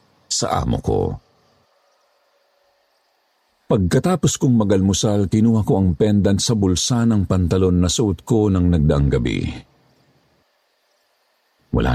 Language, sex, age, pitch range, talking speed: Filipino, male, 50-69, 85-100 Hz, 105 wpm